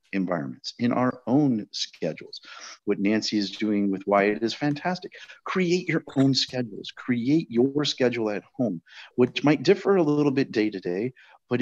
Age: 40-59